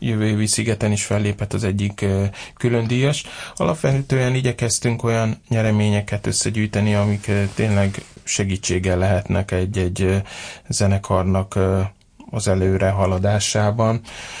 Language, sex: Hungarian, male